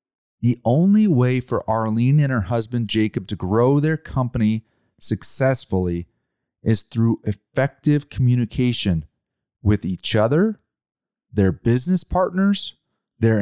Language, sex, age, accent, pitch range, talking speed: English, male, 30-49, American, 110-145 Hz, 110 wpm